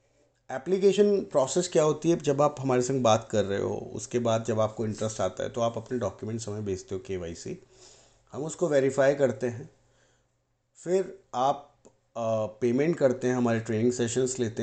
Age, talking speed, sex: 30-49, 175 wpm, male